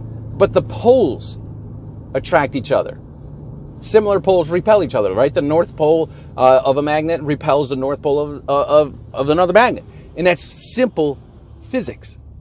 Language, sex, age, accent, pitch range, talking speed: English, male, 40-59, American, 135-195 Hz, 160 wpm